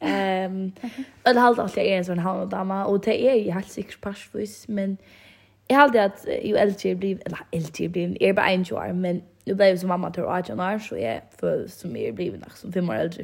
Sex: female